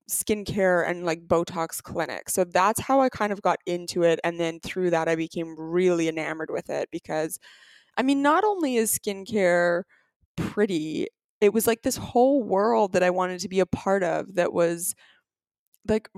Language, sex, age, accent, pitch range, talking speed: English, female, 20-39, American, 170-210 Hz, 180 wpm